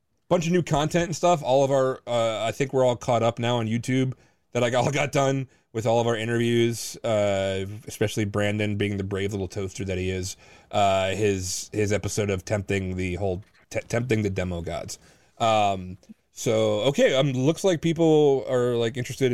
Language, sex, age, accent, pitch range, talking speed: English, male, 30-49, American, 105-135 Hz, 195 wpm